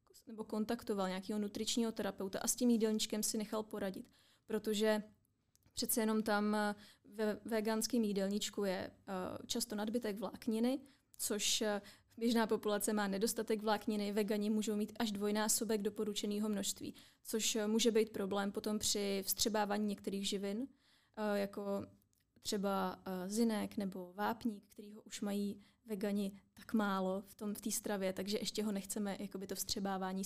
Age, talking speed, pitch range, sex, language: 20-39, 135 wpm, 200-225 Hz, female, Czech